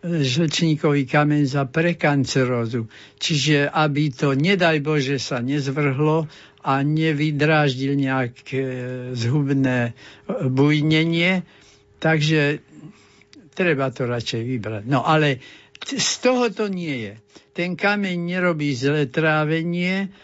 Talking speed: 95 wpm